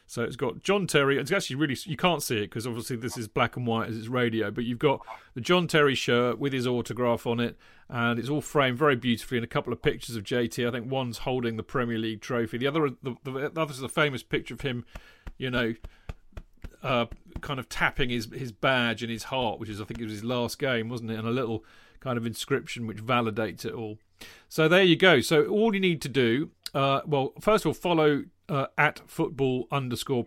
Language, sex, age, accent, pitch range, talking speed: English, male, 40-59, British, 115-150 Hz, 240 wpm